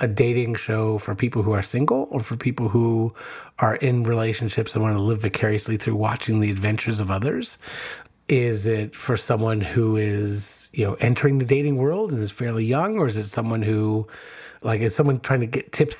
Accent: American